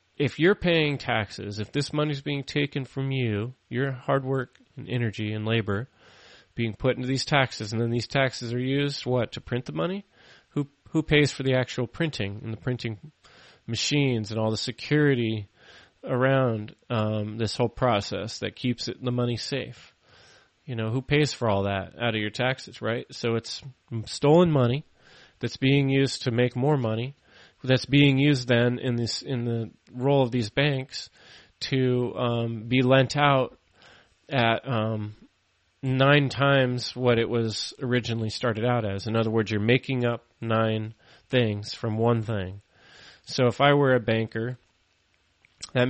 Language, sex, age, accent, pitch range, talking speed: English, male, 30-49, American, 110-135 Hz, 170 wpm